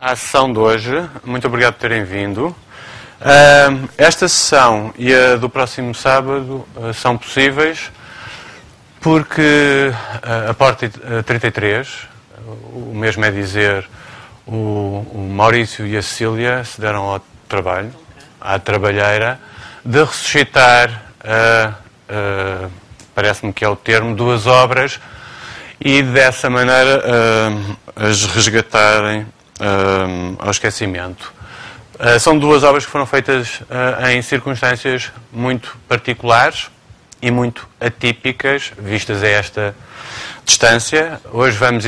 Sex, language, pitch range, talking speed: male, Portuguese, 105-125 Hz, 115 wpm